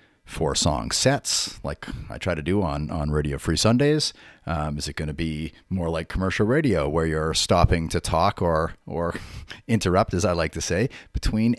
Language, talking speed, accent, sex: English, 190 wpm, American, male